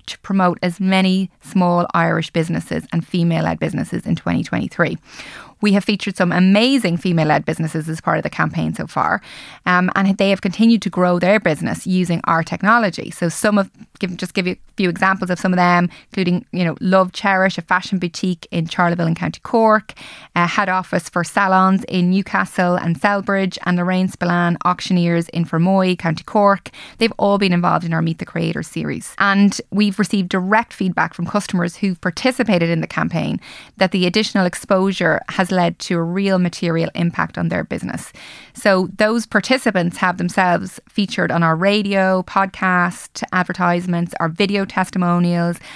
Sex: female